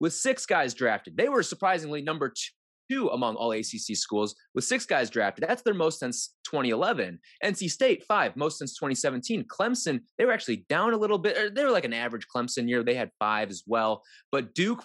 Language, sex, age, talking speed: English, male, 20-39, 200 wpm